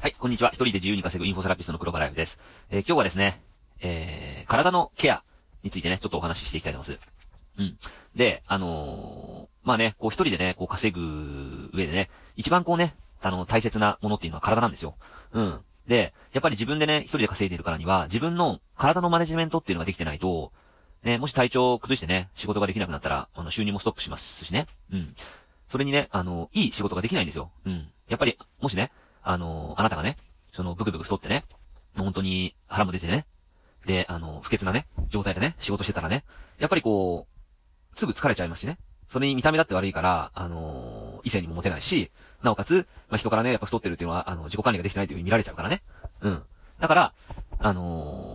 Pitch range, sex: 85-115 Hz, male